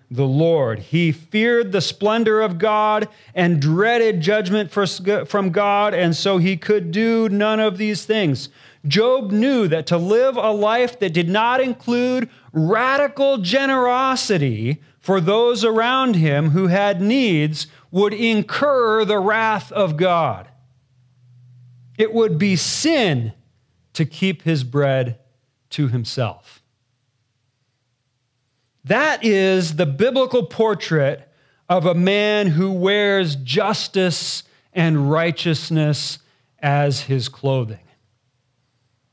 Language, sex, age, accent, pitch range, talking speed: English, male, 40-59, American, 135-210 Hz, 115 wpm